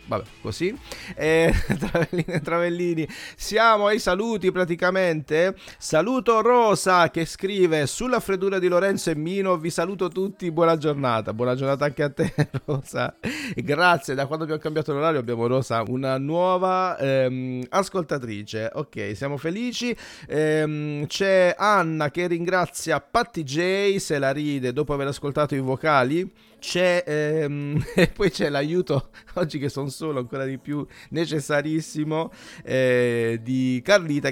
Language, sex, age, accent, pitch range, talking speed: Italian, male, 40-59, native, 145-190 Hz, 135 wpm